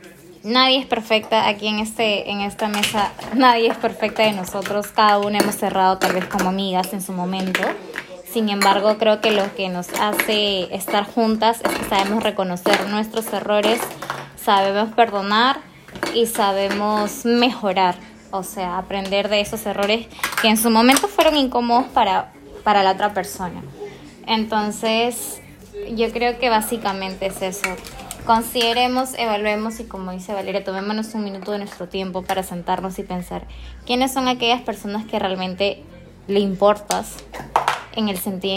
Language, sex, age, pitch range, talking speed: Spanish, female, 10-29, 190-225 Hz, 150 wpm